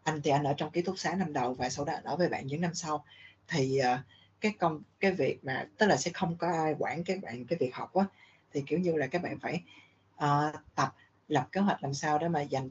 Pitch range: 135-180 Hz